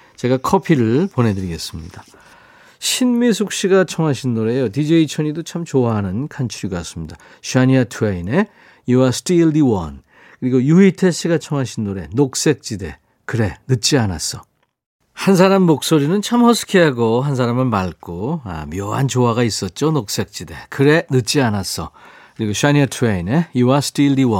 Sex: male